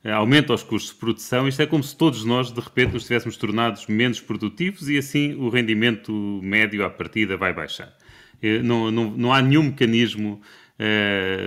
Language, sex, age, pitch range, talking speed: Portuguese, male, 30-49, 110-160 Hz, 180 wpm